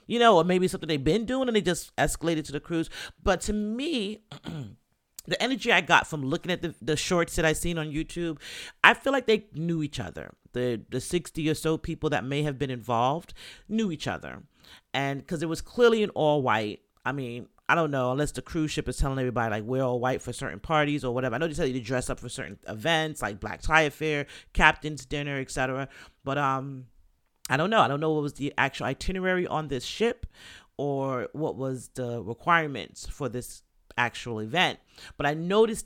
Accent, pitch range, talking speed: American, 130-170 Hz, 215 wpm